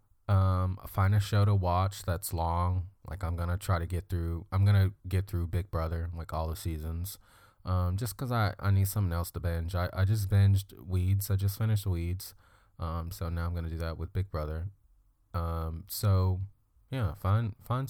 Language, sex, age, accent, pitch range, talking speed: English, male, 20-39, American, 90-105 Hz, 200 wpm